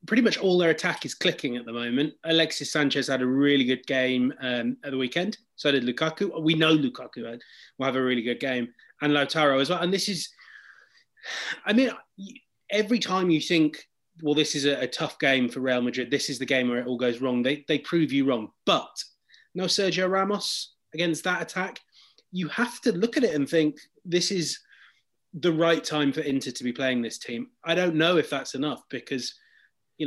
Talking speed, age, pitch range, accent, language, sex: 210 wpm, 30-49, 130-170 Hz, British, English, male